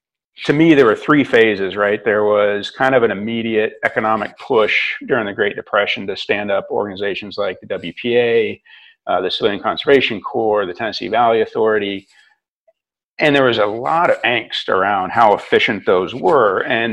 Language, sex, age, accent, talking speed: English, male, 50-69, American, 170 wpm